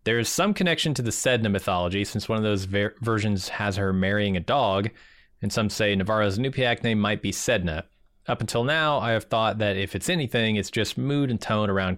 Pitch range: 100-120 Hz